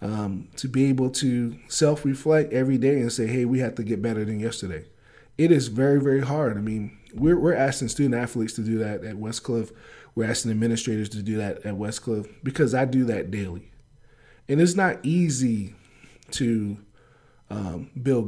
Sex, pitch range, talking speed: male, 115-135 Hz, 175 wpm